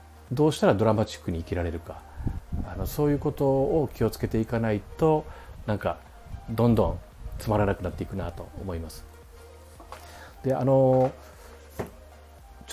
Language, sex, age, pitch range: Japanese, male, 40-59, 90-125 Hz